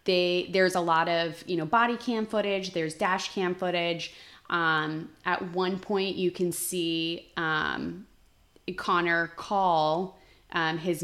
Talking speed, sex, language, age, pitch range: 140 wpm, female, English, 20-39, 160-185 Hz